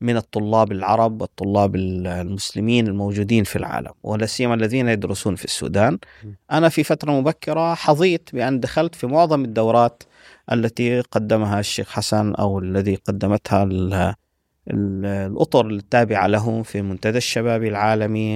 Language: Arabic